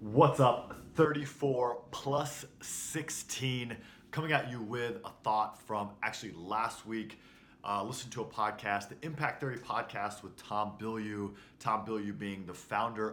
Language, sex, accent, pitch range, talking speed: English, male, American, 100-125 Hz, 145 wpm